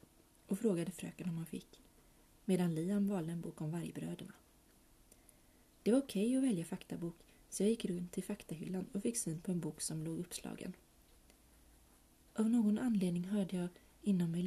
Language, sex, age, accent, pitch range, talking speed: Swedish, female, 30-49, native, 170-215 Hz, 175 wpm